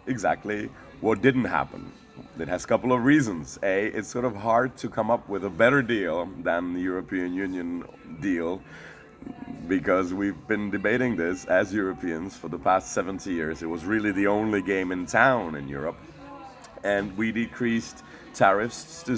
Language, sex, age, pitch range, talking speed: English, male, 40-59, 85-115 Hz, 170 wpm